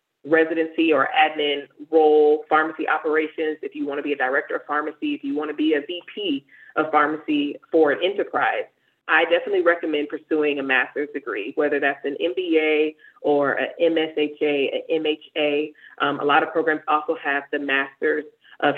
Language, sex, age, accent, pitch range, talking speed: English, female, 30-49, American, 145-180 Hz, 165 wpm